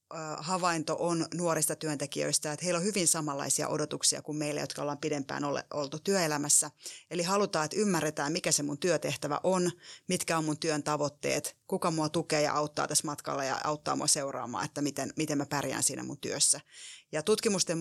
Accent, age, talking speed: native, 30-49, 175 wpm